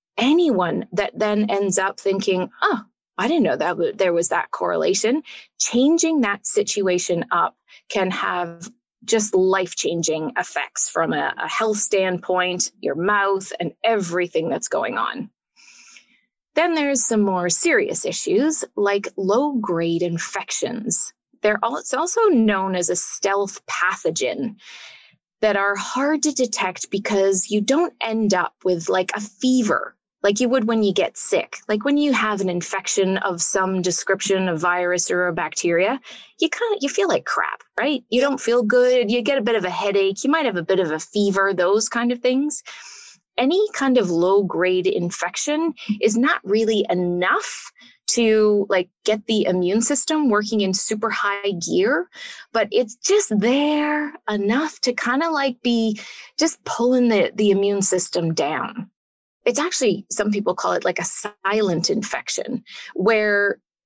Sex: female